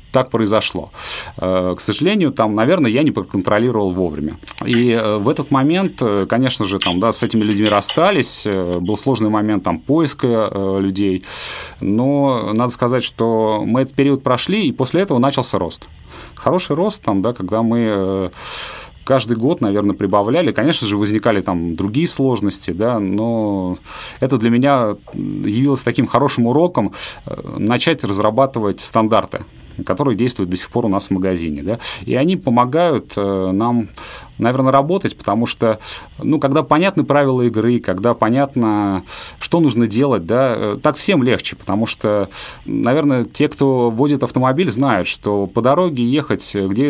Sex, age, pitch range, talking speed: male, 30-49, 100-135 Hz, 135 wpm